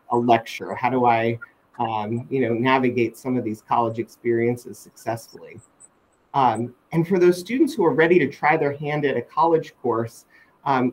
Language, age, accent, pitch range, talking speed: English, 30-49, American, 120-145 Hz, 175 wpm